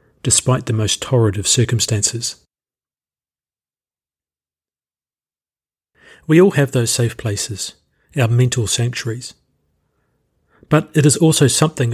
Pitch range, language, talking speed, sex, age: 110-130 Hz, English, 100 wpm, male, 40-59